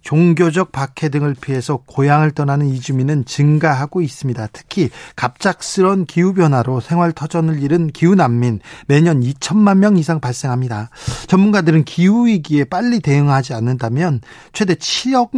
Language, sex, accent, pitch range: Korean, male, native, 135-185 Hz